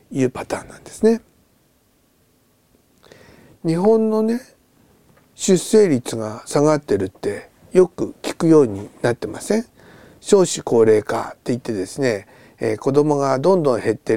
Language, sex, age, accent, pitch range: Japanese, male, 50-69, native, 120-190 Hz